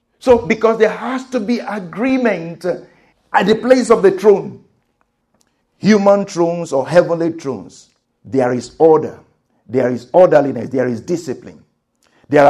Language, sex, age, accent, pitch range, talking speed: English, male, 50-69, Nigerian, 145-215 Hz, 135 wpm